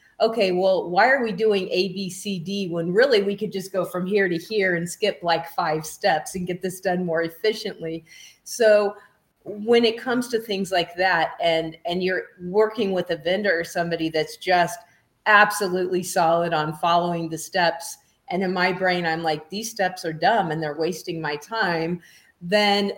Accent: American